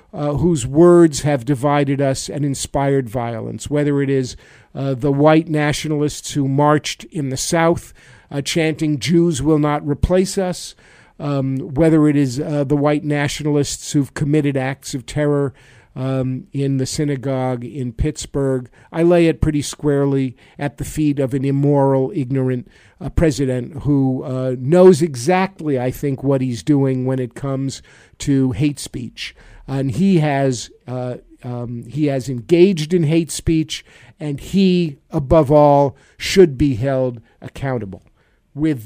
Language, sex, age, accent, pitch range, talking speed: English, male, 50-69, American, 130-160 Hz, 150 wpm